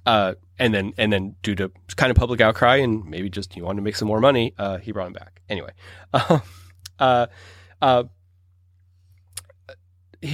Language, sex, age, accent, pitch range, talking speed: English, male, 30-49, American, 90-115 Hz, 175 wpm